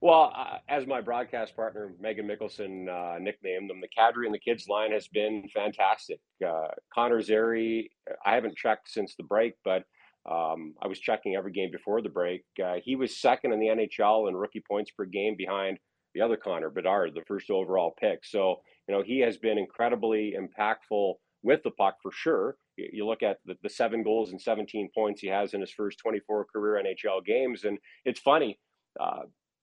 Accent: American